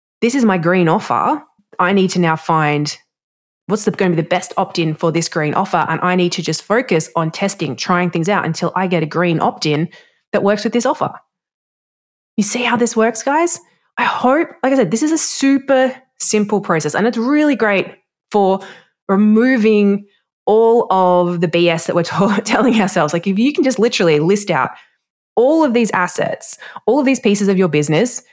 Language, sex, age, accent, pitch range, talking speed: English, female, 20-39, Australian, 170-235 Hz, 195 wpm